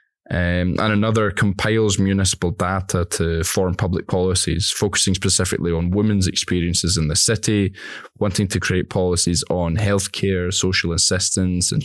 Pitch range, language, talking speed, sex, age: 85-105 Hz, English, 135 wpm, male, 10-29